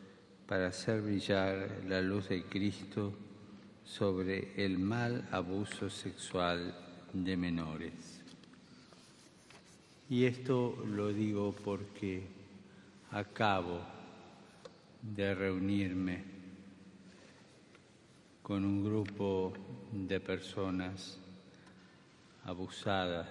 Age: 50-69